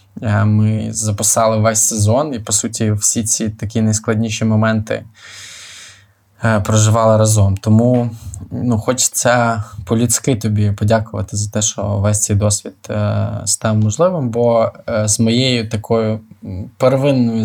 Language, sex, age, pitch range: Ukrainian, male, 20-39, 105-115 Hz